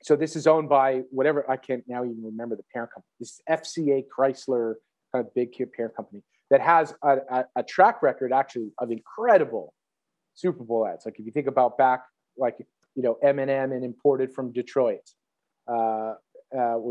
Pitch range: 125-145 Hz